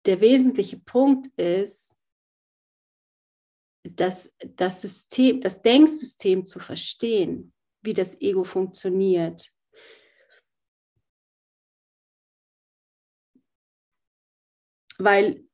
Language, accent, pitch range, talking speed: German, German, 185-250 Hz, 60 wpm